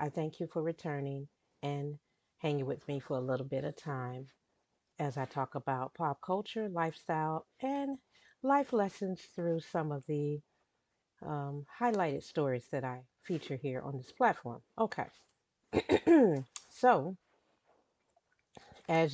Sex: female